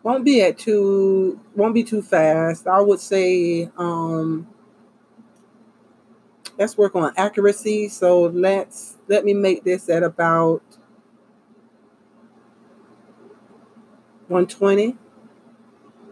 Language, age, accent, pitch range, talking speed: English, 40-59, American, 180-225 Hz, 95 wpm